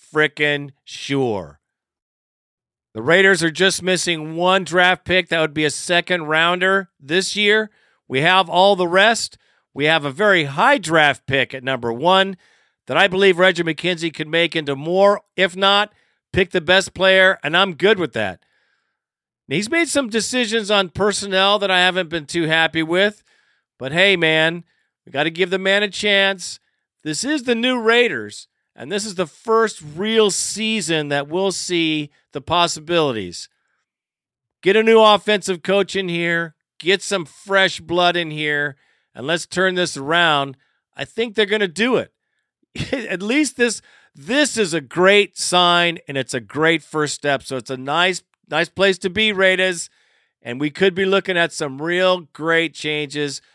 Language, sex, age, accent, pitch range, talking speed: English, male, 50-69, American, 155-195 Hz, 170 wpm